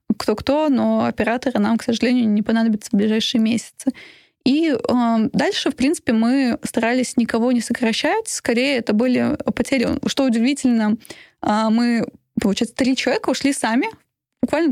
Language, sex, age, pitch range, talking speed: Russian, female, 20-39, 225-265 Hz, 145 wpm